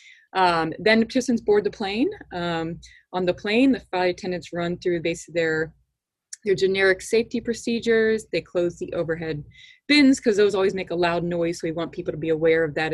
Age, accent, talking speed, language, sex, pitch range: 20-39, American, 200 wpm, English, female, 160-205 Hz